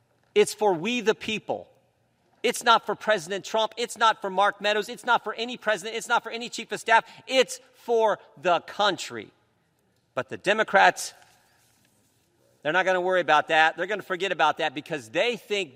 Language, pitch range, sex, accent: English, 175-230 Hz, male, American